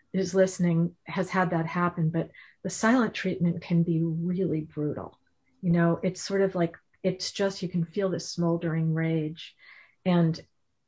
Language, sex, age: English, female, 40-59